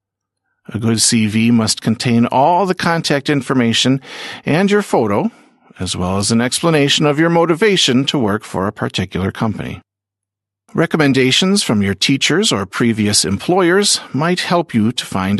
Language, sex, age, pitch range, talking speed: Slovak, male, 50-69, 105-165 Hz, 150 wpm